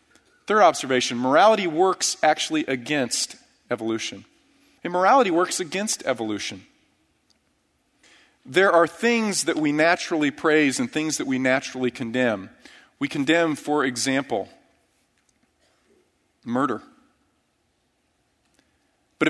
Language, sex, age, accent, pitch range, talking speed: English, male, 40-59, American, 125-180 Hz, 95 wpm